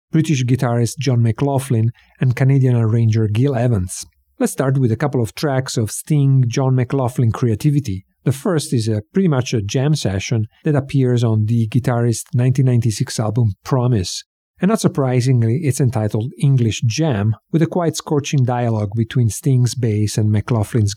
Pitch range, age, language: 110-140 Hz, 50-69, English